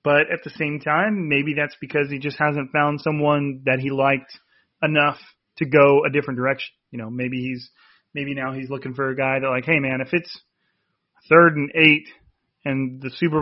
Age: 30-49